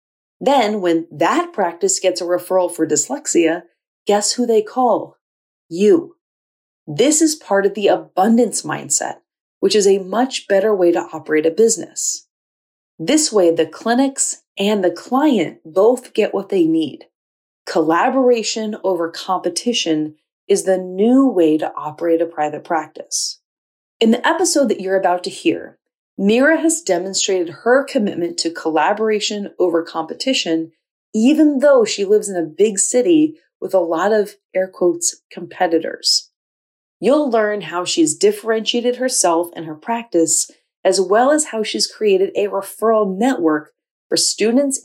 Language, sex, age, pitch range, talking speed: English, female, 30-49, 170-255 Hz, 145 wpm